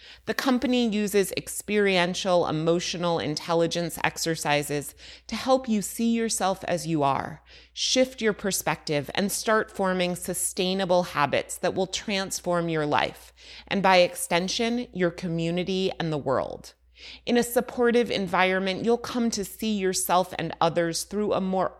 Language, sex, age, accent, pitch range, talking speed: English, female, 30-49, American, 165-215 Hz, 140 wpm